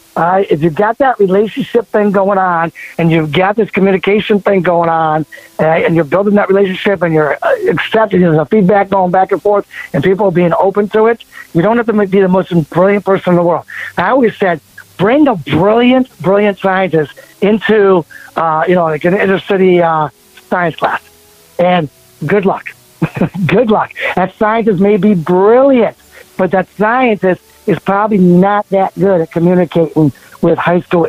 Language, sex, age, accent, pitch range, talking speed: English, male, 60-79, American, 165-200 Hz, 180 wpm